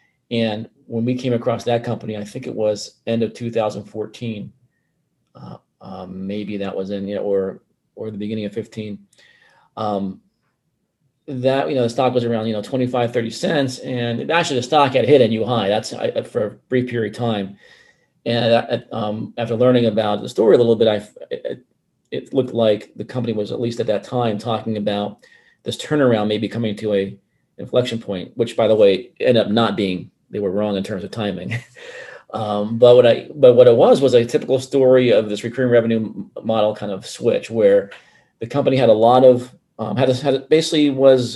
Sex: male